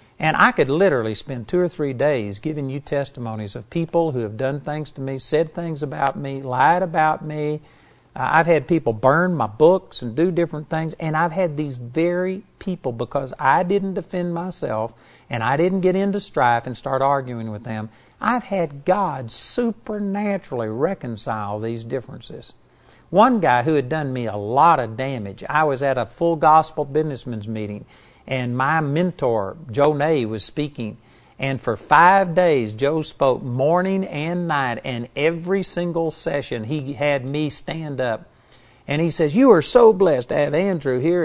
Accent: American